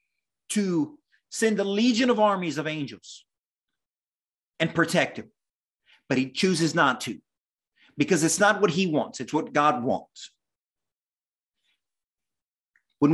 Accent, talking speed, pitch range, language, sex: American, 125 wpm, 150-205 Hz, English, male